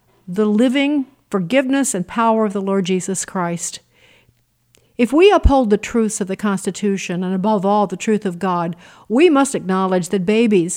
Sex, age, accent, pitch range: female, 50-69, American, 195-235 Hz